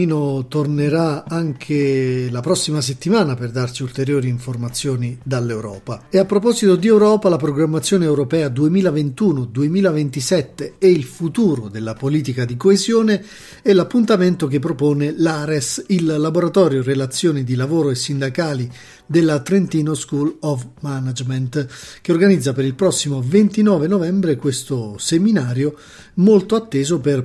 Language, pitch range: Italian, 135-180 Hz